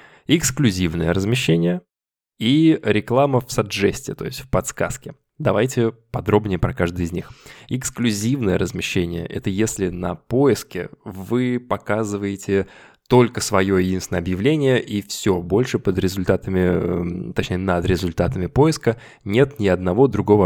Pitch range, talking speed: 90-120 Hz, 120 wpm